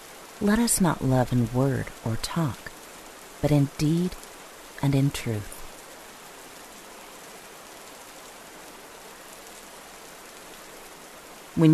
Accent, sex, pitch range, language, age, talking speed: American, female, 125-165 Hz, English, 40-59, 75 wpm